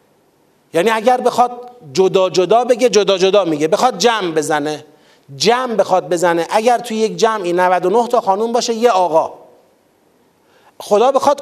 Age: 30-49